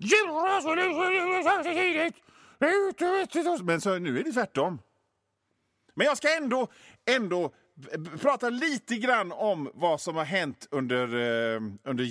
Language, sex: Swedish, male